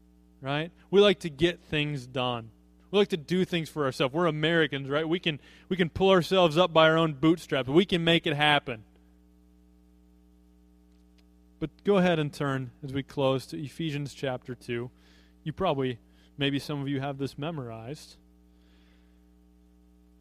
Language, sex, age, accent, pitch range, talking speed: English, male, 20-39, American, 120-195 Hz, 160 wpm